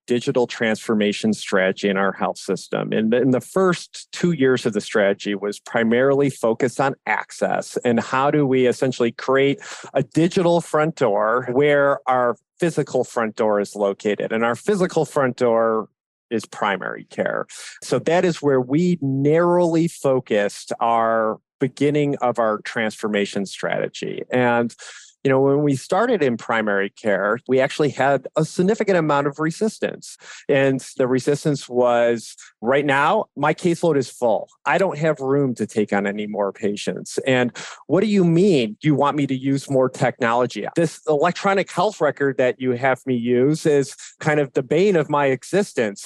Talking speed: 165 wpm